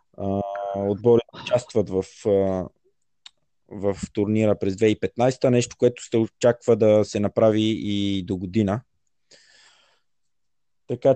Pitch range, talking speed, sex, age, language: 100-115 Hz, 110 wpm, male, 20-39, Bulgarian